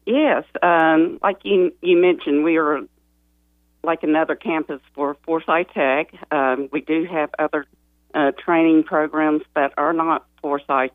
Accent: American